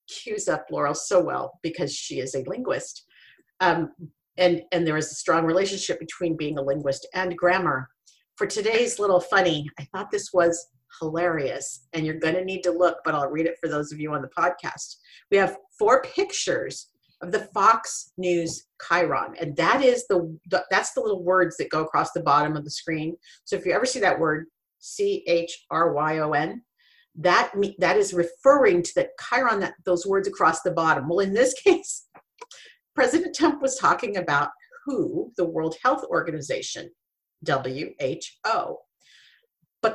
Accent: American